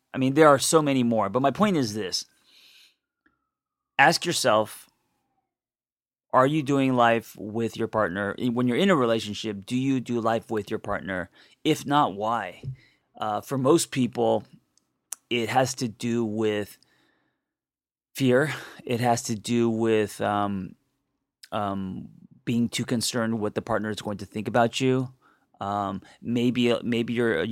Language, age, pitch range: English, 30-49, 105-125 Hz